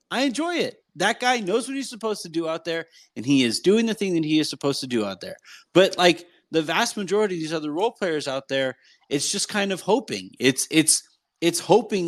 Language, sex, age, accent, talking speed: English, male, 30-49, American, 240 wpm